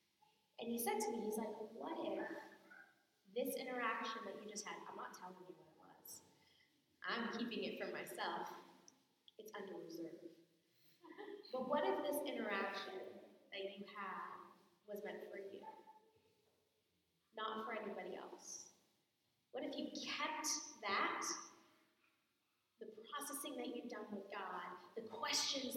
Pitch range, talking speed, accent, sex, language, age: 205-295 Hz, 140 wpm, American, female, English, 20-39